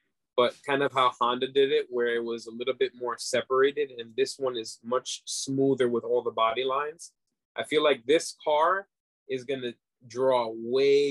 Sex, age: male, 20-39